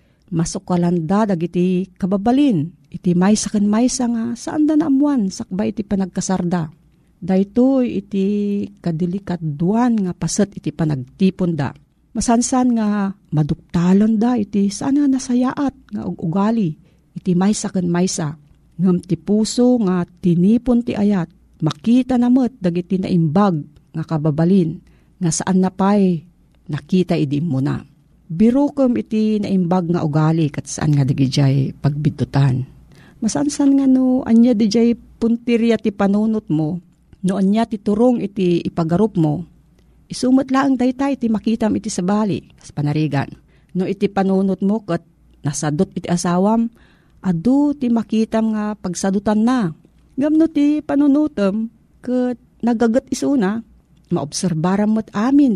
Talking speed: 125 wpm